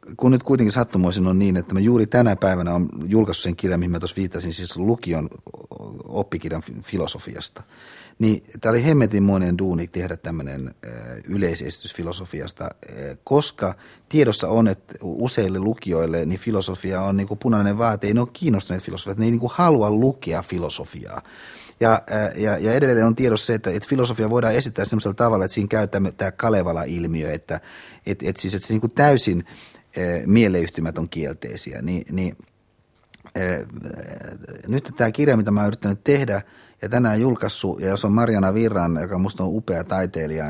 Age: 30-49